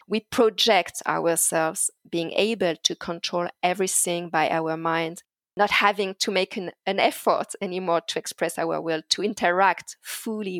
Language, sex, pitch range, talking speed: English, female, 180-225 Hz, 145 wpm